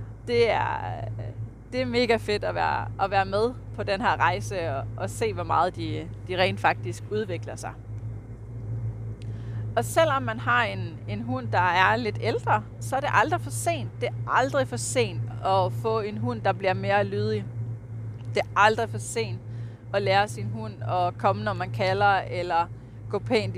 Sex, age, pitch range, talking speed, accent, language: female, 30-49, 110-120 Hz, 180 wpm, native, Danish